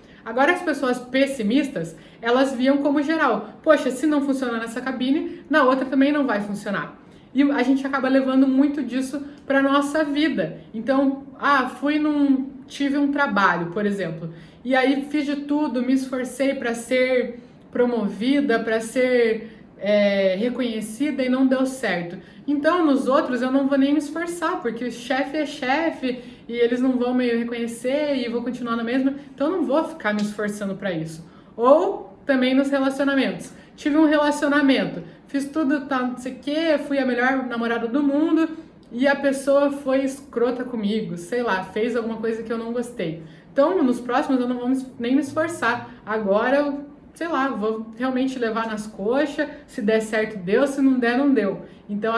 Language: Portuguese